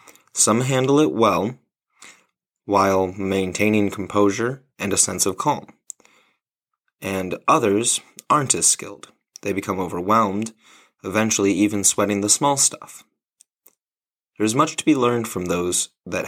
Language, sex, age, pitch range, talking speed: English, male, 30-49, 95-115 Hz, 130 wpm